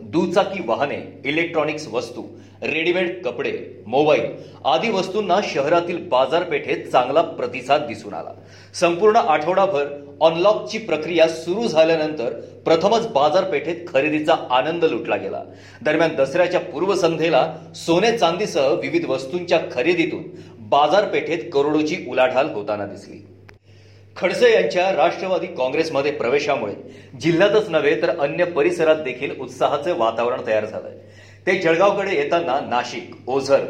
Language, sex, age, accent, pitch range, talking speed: Marathi, male, 40-59, native, 140-180 Hz, 100 wpm